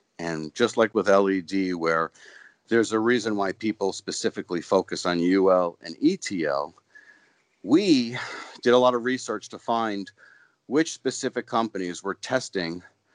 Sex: male